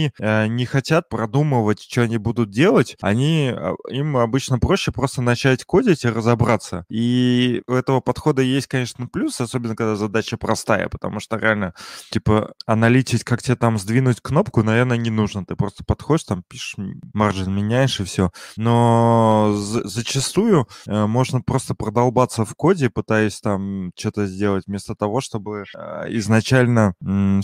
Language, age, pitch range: Russian, 20-39, 105-125 Hz